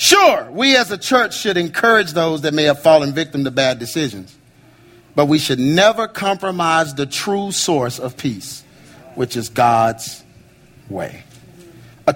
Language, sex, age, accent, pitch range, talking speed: English, male, 40-59, American, 125-175 Hz, 155 wpm